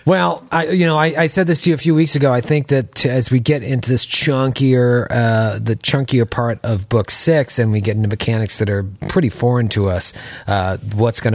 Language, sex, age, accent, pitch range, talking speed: English, male, 40-59, American, 110-160 Hz, 235 wpm